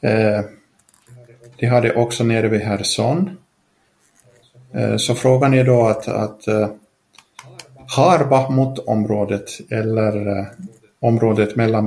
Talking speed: 110 wpm